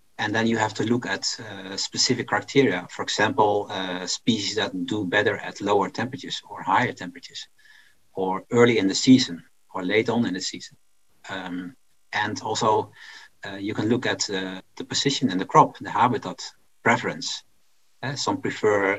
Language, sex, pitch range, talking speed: English, male, 110-135 Hz, 170 wpm